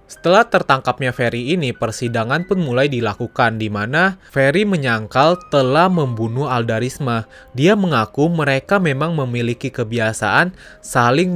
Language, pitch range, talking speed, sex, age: Indonesian, 120-155 Hz, 110 wpm, male, 20-39